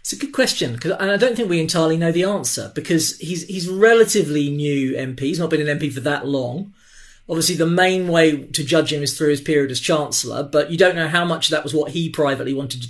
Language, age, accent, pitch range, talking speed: English, 40-59, British, 140-170 Hz, 250 wpm